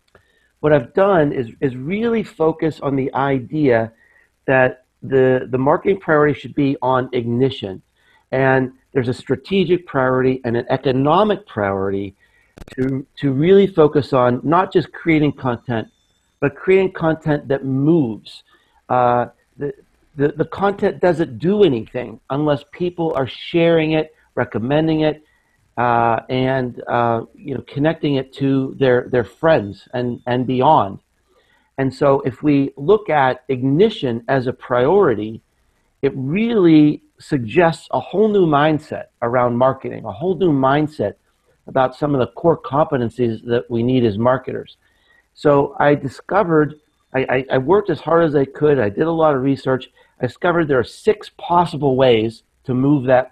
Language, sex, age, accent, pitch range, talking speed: English, male, 50-69, American, 125-155 Hz, 150 wpm